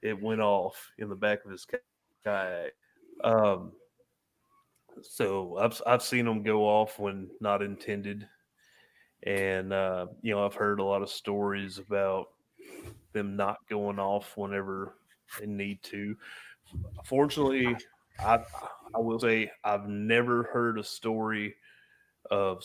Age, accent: 30-49, American